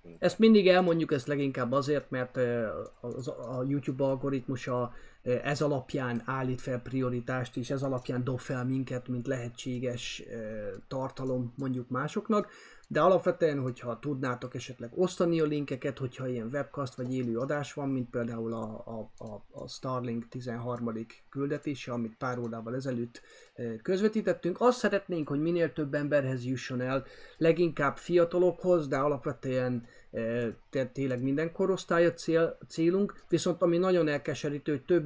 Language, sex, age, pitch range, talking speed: Hungarian, male, 30-49, 125-155 Hz, 130 wpm